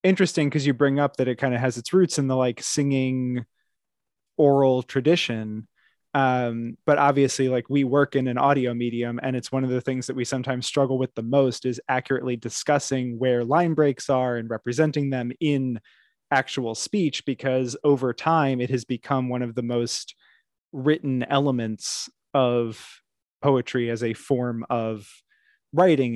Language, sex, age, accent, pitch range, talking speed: English, male, 20-39, American, 120-140 Hz, 165 wpm